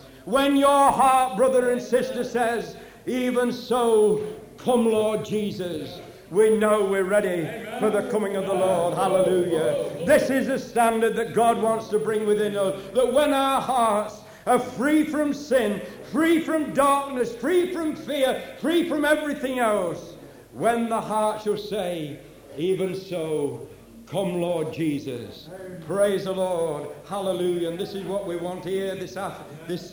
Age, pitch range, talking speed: 60-79, 185-235 Hz, 150 wpm